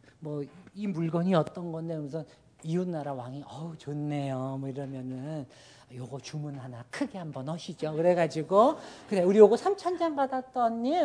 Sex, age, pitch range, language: male, 50-69, 140-210 Hz, Korean